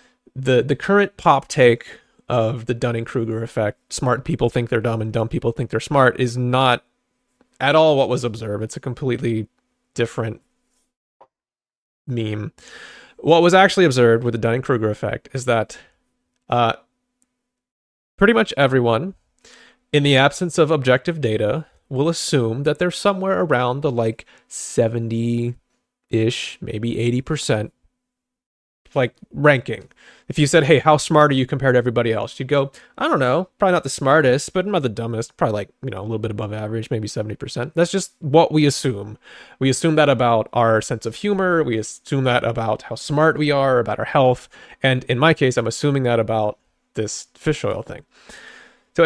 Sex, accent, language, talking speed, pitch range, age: male, American, English, 170 wpm, 115-160 Hz, 30-49